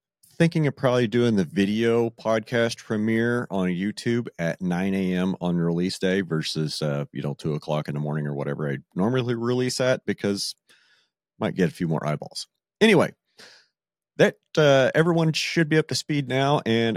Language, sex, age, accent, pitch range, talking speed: English, male, 40-59, American, 100-140 Hz, 175 wpm